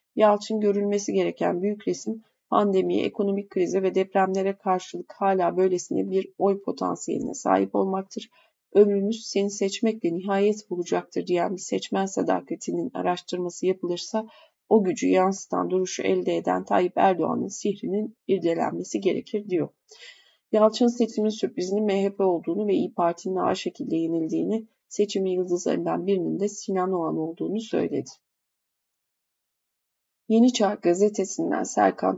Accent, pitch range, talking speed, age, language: native, 180-210 Hz, 120 wpm, 30-49, Turkish